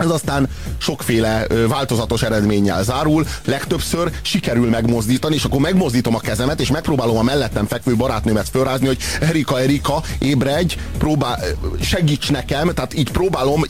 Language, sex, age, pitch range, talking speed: Hungarian, male, 30-49, 110-140 Hz, 135 wpm